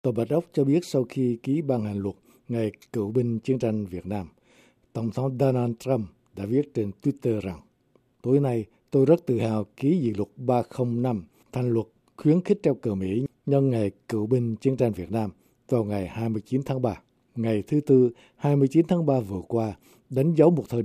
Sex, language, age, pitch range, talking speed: male, Vietnamese, 60-79, 105-135 Hz, 200 wpm